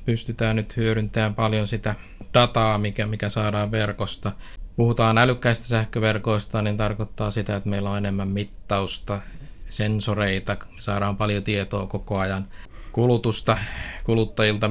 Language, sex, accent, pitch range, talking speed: Finnish, male, native, 100-110 Hz, 120 wpm